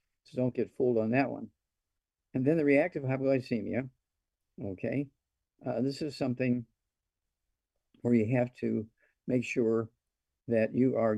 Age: 50-69